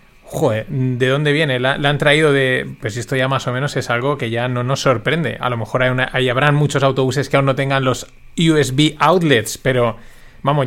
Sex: male